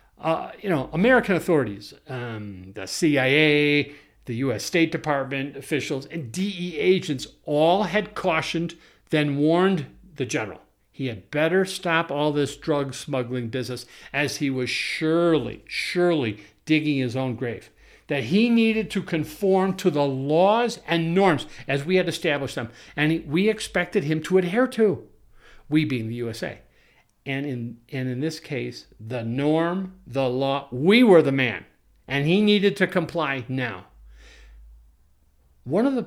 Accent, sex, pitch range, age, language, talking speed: American, male, 125-180 Hz, 50-69, English, 150 wpm